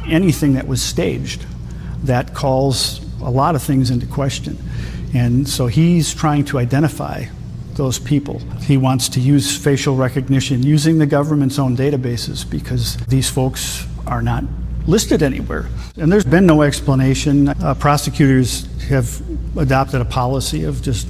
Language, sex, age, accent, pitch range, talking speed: English, male, 50-69, American, 125-145 Hz, 145 wpm